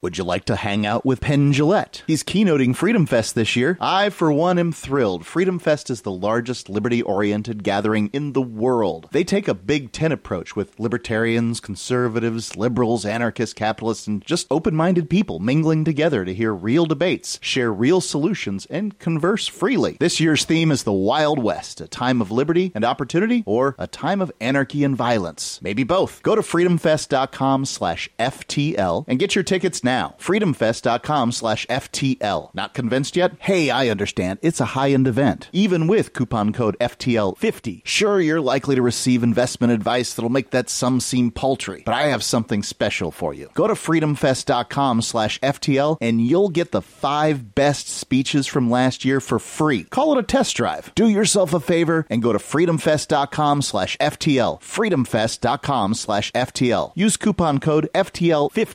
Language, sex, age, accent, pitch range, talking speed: English, male, 30-49, American, 115-160 Hz, 170 wpm